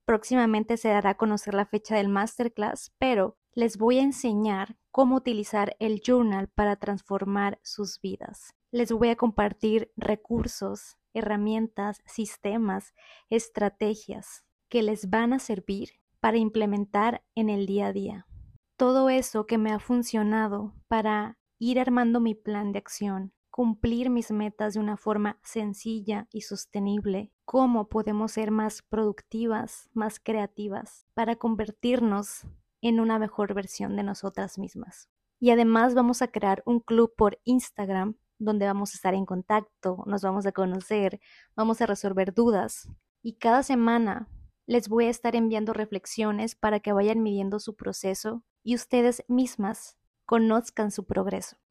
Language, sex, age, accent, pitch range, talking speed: Spanish, female, 20-39, Mexican, 205-230 Hz, 145 wpm